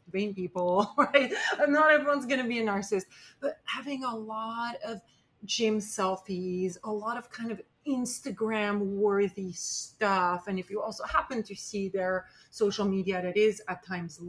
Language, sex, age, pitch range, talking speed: English, female, 30-49, 180-220 Hz, 165 wpm